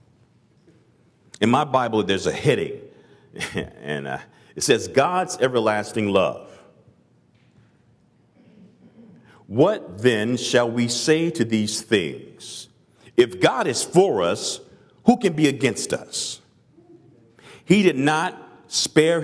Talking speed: 105 wpm